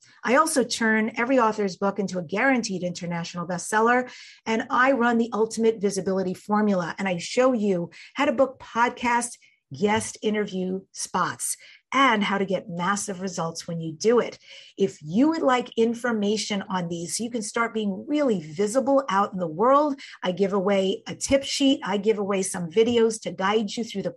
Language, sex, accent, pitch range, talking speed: English, female, American, 195-250 Hz, 180 wpm